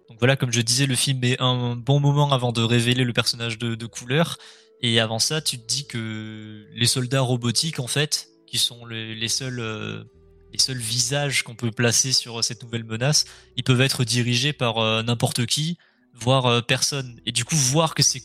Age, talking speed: 20-39, 210 wpm